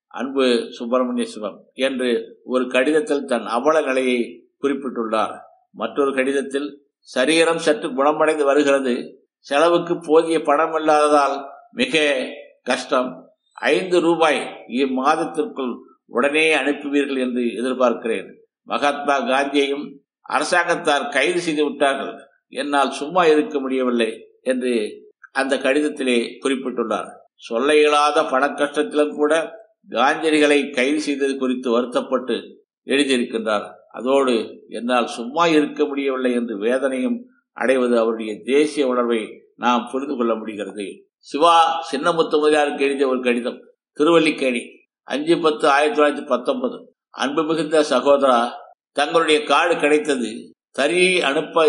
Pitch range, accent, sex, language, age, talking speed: 130-155 Hz, native, male, Tamil, 50-69, 100 wpm